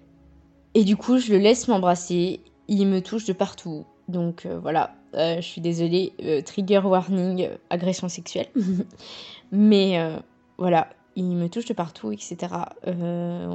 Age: 20-39